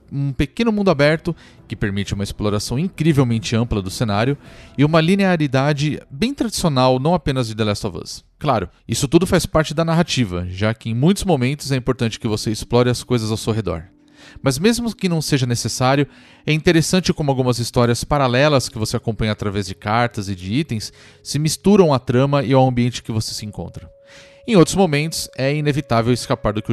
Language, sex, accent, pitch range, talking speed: Portuguese, male, Brazilian, 115-165 Hz, 195 wpm